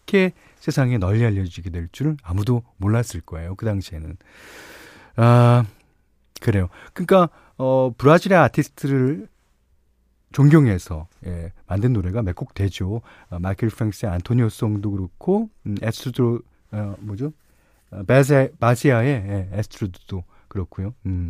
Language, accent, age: Korean, native, 40-59